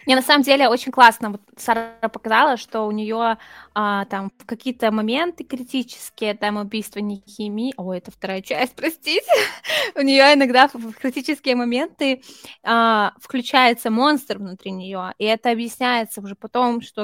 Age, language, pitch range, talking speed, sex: 20-39, Russian, 215-250 Hz, 155 wpm, female